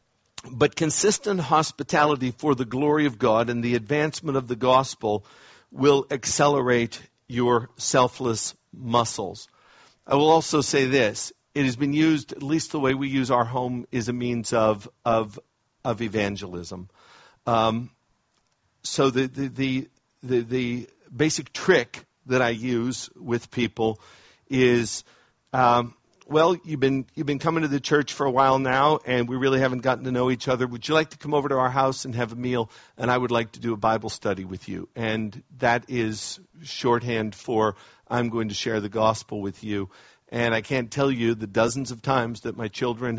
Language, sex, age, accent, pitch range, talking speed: English, male, 50-69, American, 115-135 Hz, 180 wpm